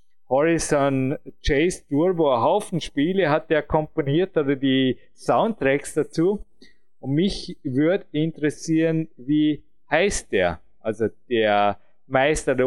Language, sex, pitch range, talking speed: German, male, 135-170 Hz, 110 wpm